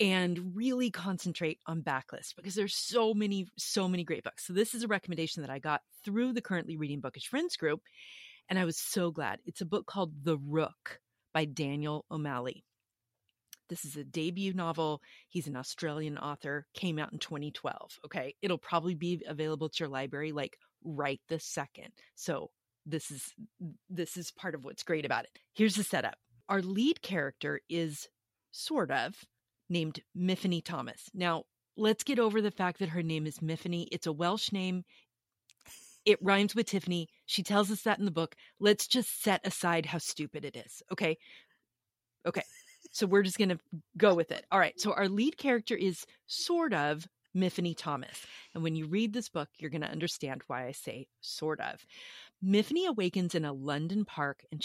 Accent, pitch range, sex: American, 150-200 Hz, female